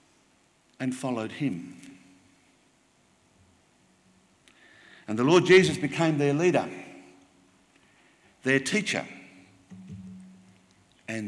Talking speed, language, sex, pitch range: 70 wpm, English, male, 95-145 Hz